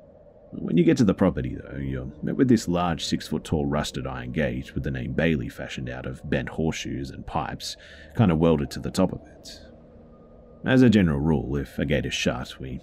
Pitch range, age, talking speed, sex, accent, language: 70-85 Hz, 30-49, 220 wpm, male, Australian, English